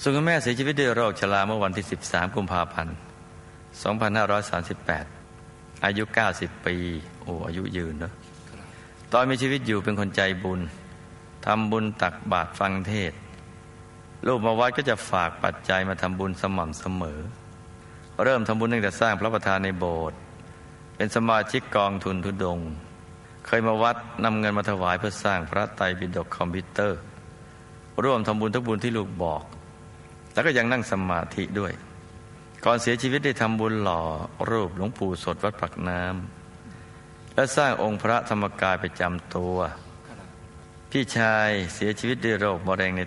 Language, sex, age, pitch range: Thai, male, 60-79, 90-110 Hz